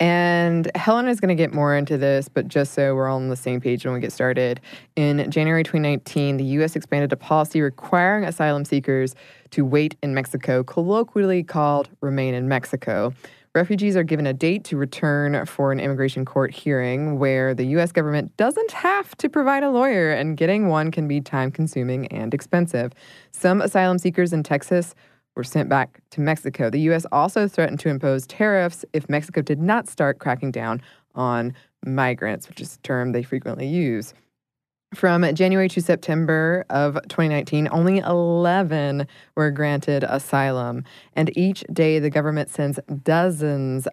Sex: female